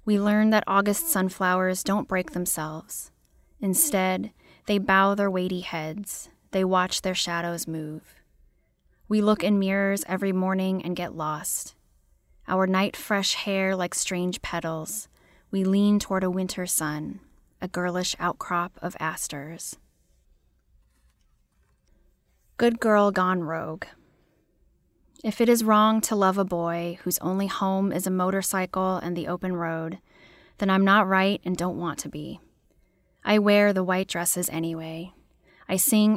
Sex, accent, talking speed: female, American, 140 wpm